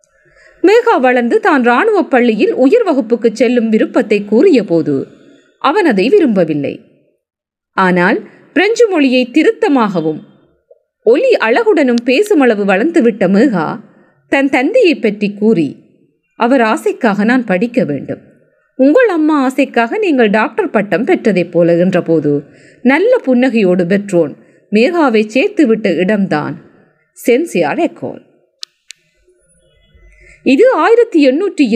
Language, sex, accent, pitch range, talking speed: Tamil, female, native, 205-345 Hz, 95 wpm